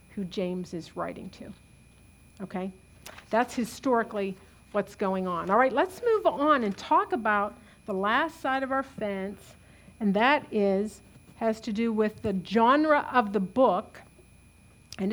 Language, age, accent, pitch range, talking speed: English, 50-69, American, 205-260 Hz, 150 wpm